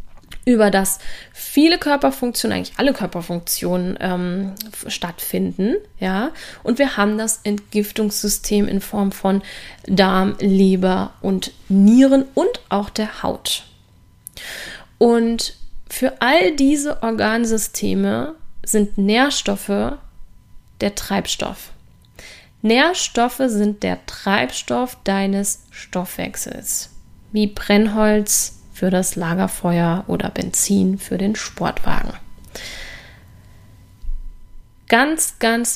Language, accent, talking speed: German, German, 90 wpm